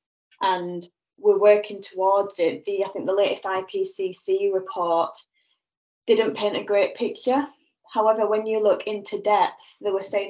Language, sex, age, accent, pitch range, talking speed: English, female, 10-29, British, 180-210 Hz, 150 wpm